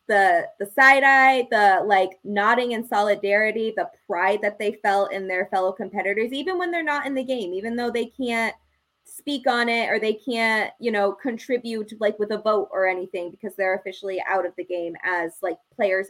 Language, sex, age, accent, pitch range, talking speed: English, female, 20-39, American, 200-265 Hz, 200 wpm